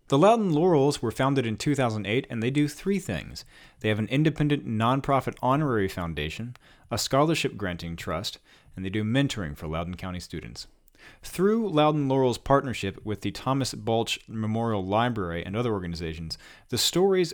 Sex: male